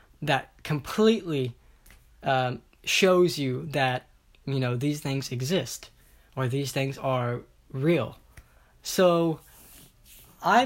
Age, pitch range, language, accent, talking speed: 10-29, 130-165 Hz, English, American, 100 wpm